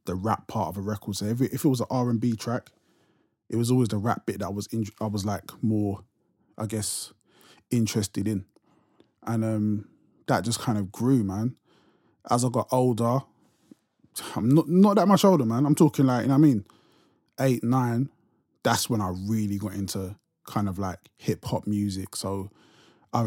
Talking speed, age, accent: 190 wpm, 20-39, British